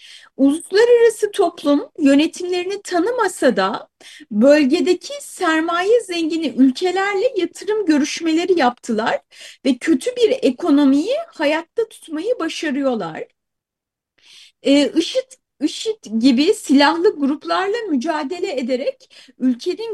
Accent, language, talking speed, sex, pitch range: native, Turkish, 85 wpm, female, 260-355 Hz